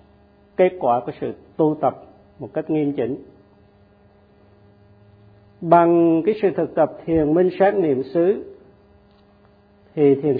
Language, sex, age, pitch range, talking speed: Vietnamese, male, 50-69, 100-165 Hz, 125 wpm